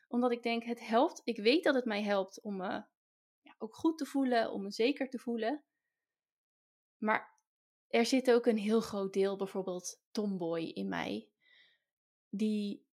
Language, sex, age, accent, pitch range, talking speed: Dutch, female, 20-39, Dutch, 215-295 Hz, 165 wpm